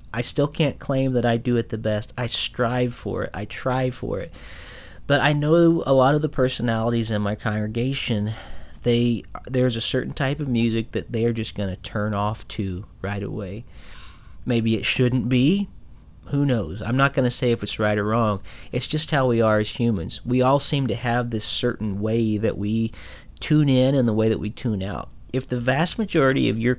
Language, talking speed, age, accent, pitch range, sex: English, 210 wpm, 40-59, American, 105-130 Hz, male